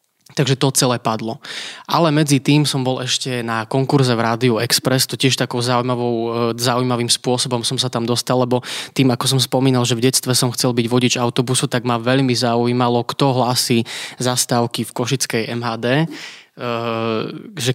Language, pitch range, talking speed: Slovak, 115-130 Hz, 165 wpm